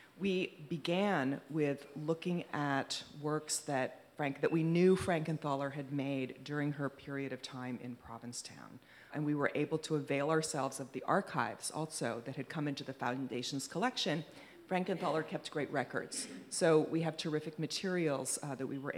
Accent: American